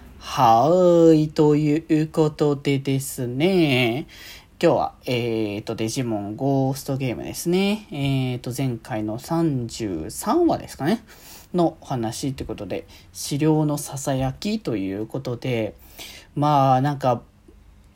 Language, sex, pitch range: Japanese, male, 140-190 Hz